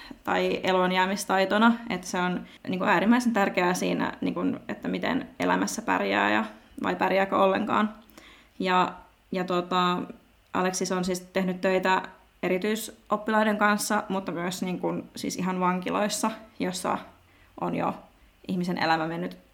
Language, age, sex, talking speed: Finnish, 20-39, female, 130 wpm